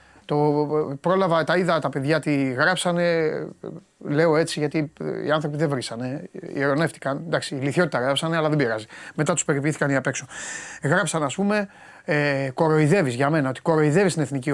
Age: 30-49